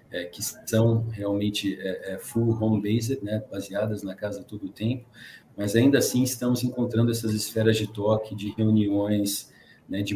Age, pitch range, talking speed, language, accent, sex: 40-59, 105-115 Hz, 165 wpm, Portuguese, Brazilian, male